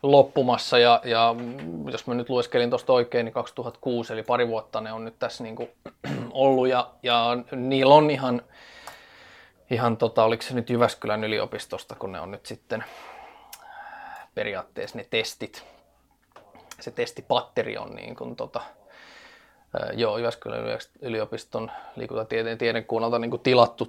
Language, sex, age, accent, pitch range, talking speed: Finnish, male, 20-39, native, 115-130 Hz, 130 wpm